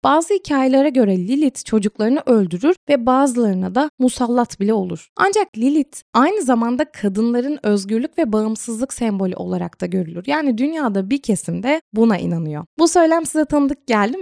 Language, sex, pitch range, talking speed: Turkish, female, 200-270 Hz, 150 wpm